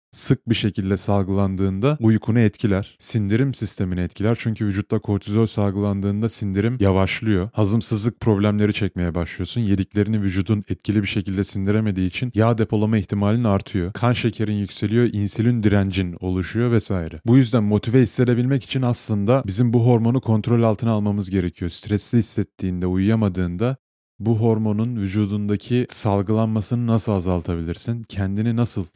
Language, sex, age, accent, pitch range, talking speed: Turkish, male, 30-49, native, 100-120 Hz, 125 wpm